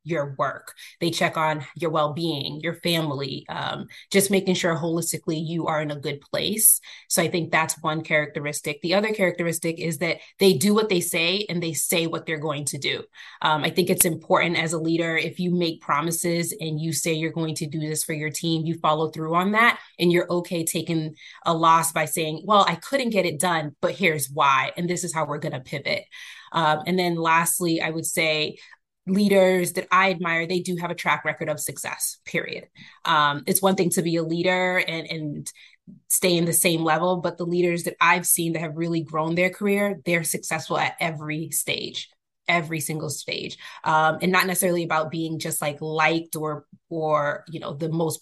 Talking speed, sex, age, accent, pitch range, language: 210 wpm, female, 20-39, American, 155-180 Hz, English